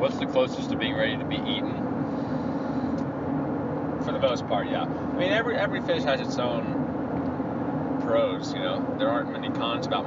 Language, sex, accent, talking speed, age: English, male, American, 180 wpm, 30-49